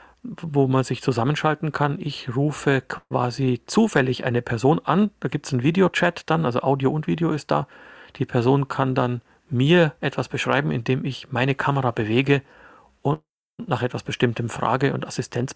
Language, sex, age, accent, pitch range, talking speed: German, male, 40-59, German, 125-140 Hz, 165 wpm